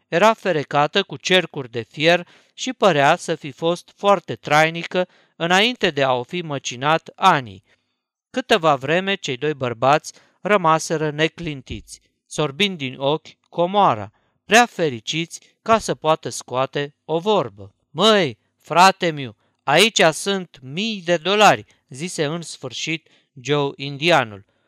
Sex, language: male, Romanian